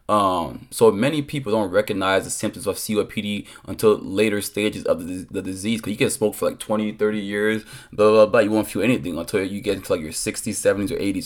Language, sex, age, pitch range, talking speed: English, male, 20-39, 105-125 Hz, 230 wpm